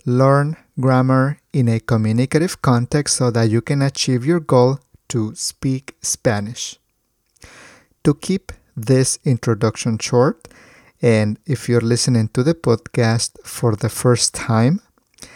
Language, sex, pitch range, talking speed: English, male, 115-135 Hz, 125 wpm